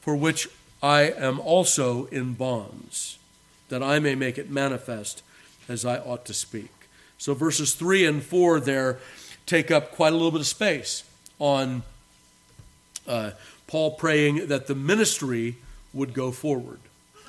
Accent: American